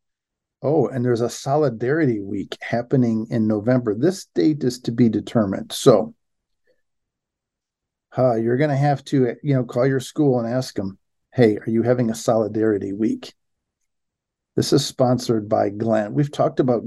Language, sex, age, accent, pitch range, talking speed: English, male, 50-69, American, 105-130 Hz, 160 wpm